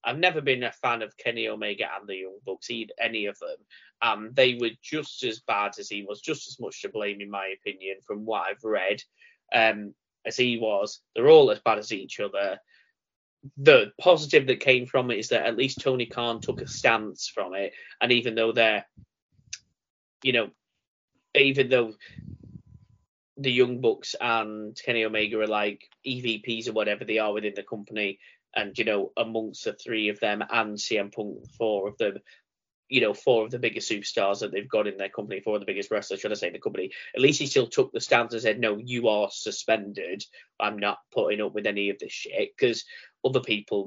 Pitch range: 105-170 Hz